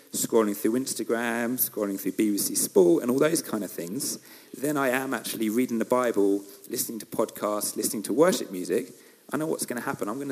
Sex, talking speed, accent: male, 205 wpm, British